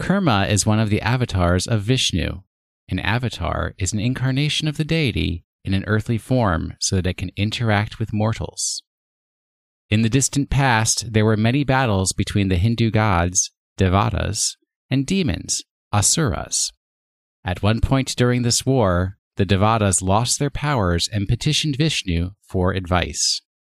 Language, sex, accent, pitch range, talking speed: English, male, American, 95-130 Hz, 150 wpm